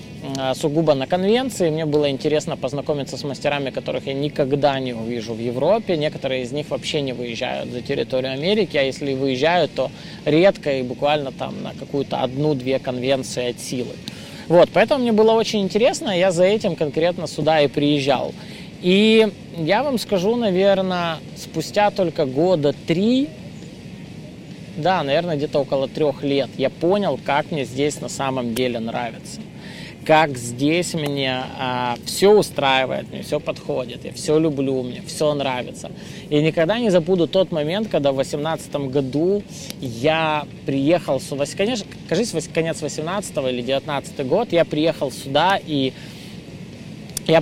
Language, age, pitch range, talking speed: Russian, 20-39, 140-180 Hz, 145 wpm